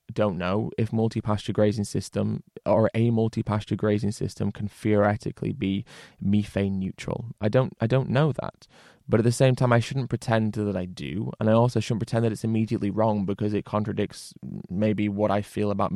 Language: English